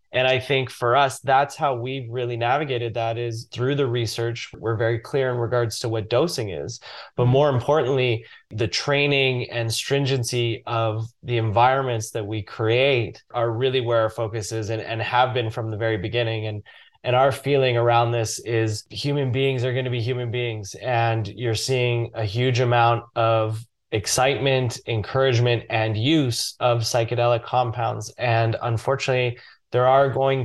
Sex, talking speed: male, 170 wpm